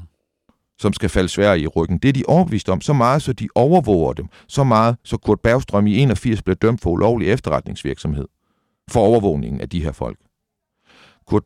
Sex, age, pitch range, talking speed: male, 60-79, 90-115 Hz, 195 wpm